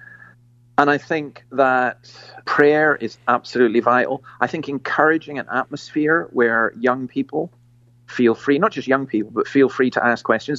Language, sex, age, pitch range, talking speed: English, male, 40-59, 120-135 Hz, 160 wpm